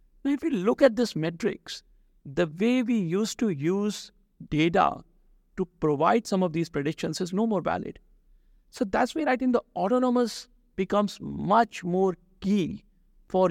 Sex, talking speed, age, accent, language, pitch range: male, 160 wpm, 60-79, Indian, English, 160-210 Hz